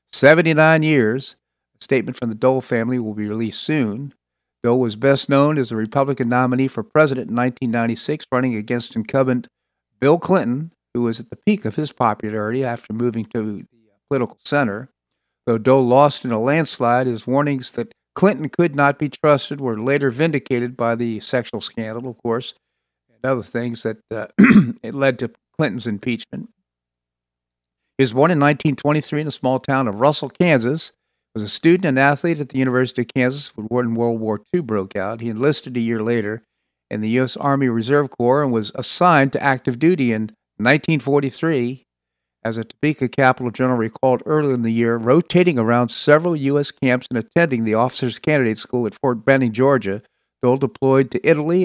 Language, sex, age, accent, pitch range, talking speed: English, male, 50-69, American, 115-140 Hz, 175 wpm